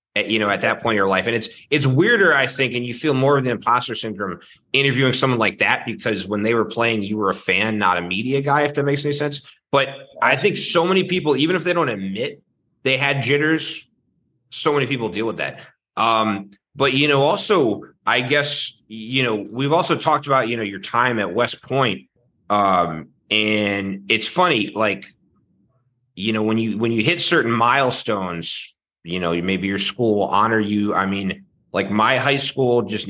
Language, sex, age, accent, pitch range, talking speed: English, male, 30-49, American, 105-135 Hz, 205 wpm